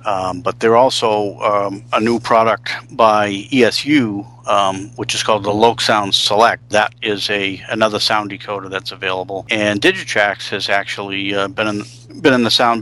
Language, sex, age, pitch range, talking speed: English, male, 40-59, 100-120 Hz, 175 wpm